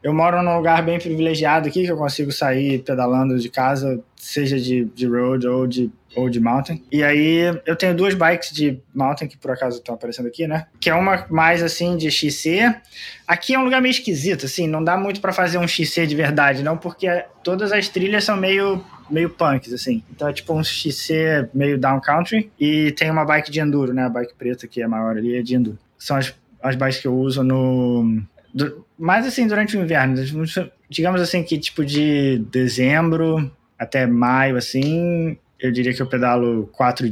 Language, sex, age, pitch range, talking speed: Portuguese, male, 20-39, 125-165 Hz, 200 wpm